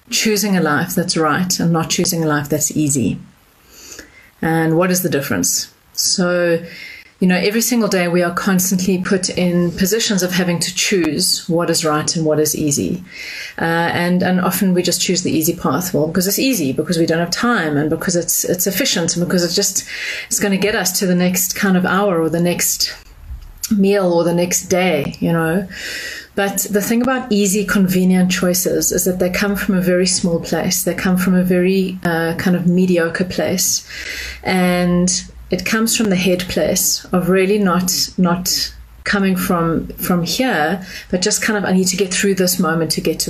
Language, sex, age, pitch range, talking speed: English, female, 30-49, 170-195 Hz, 200 wpm